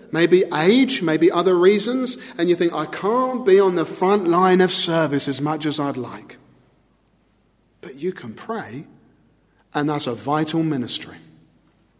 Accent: British